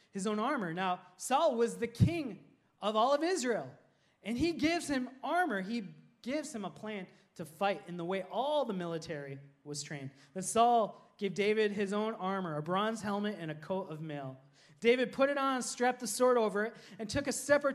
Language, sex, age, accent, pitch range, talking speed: English, male, 20-39, American, 190-265 Hz, 205 wpm